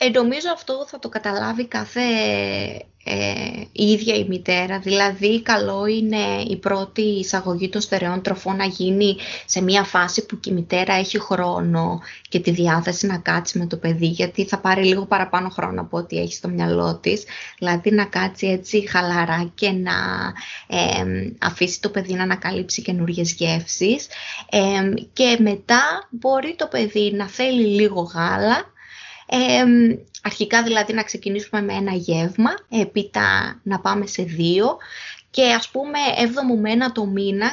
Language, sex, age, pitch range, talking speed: Greek, female, 20-39, 180-220 Hz, 150 wpm